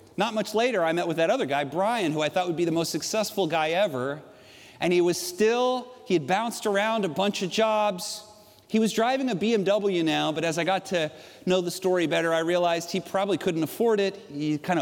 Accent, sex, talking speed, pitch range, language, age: American, male, 225 wpm, 170-225 Hz, Dutch, 40-59